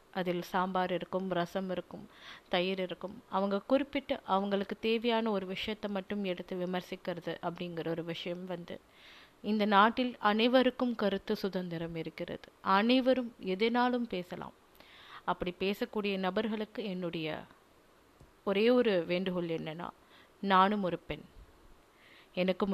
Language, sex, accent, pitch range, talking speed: Tamil, female, native, 180-225 Hz, 110 wpm